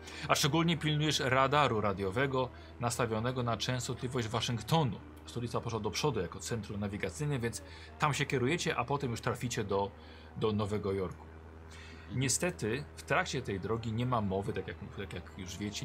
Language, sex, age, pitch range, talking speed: Polish, male, 40-59, 95-140 Hz, 155 wpm